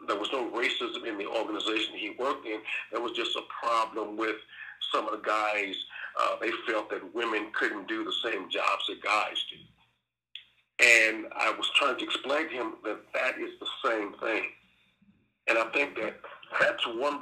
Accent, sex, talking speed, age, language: American, male, 185 wpm, 50-69, English